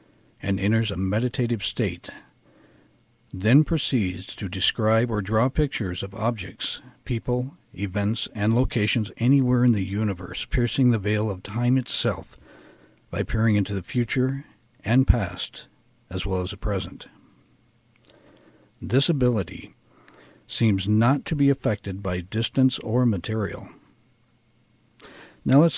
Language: English